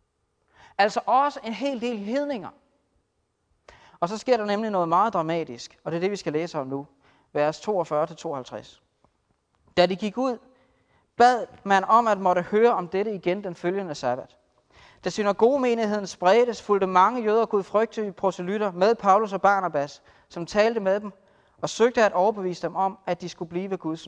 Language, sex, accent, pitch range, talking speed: Danish, male, native, 170-225 Hz, 170 wpm